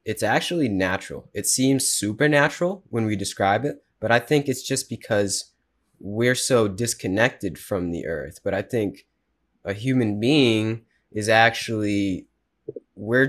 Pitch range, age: 95-115 Hz, 20-39